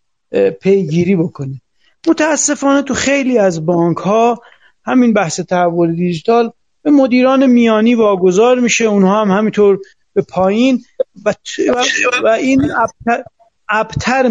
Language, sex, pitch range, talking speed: Persian, male, 195-255 Hz, 115 wpm